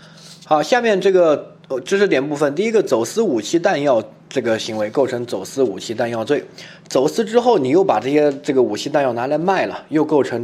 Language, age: Chinese, 20-39